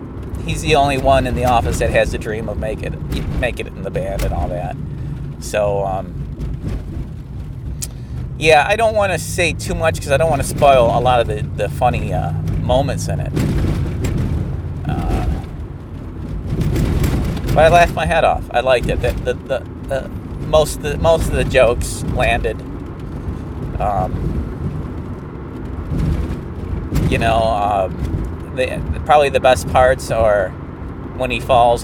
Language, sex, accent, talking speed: English, male, American, 155 wpm